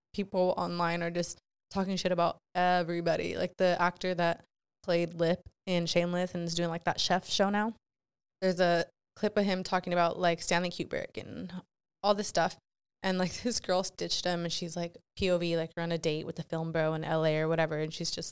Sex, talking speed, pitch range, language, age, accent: female, 205 wpm, 170-195 Hz, English, 20-39, American